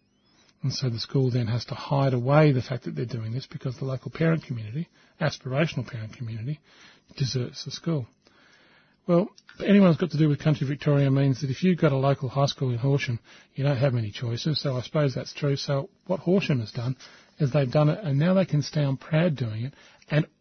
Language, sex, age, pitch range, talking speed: English, male, 40-59, 130-155 Hz, 215 wpm